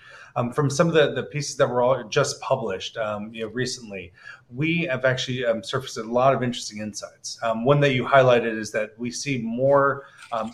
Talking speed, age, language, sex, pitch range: 200 wpm, 30-49, English, male, 110-130 Hz